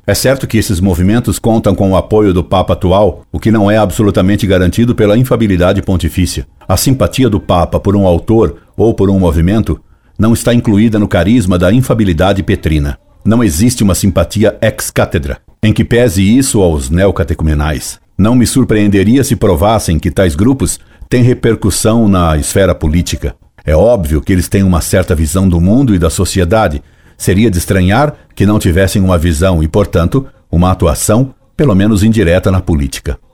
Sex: male